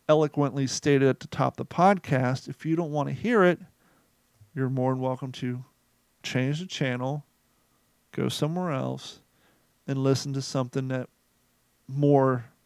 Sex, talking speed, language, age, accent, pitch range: male, 150 wpm, English, 40-59, American, 130-160 Hz